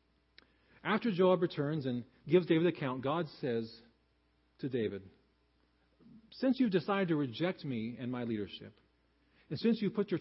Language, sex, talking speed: English, male, 155 wpm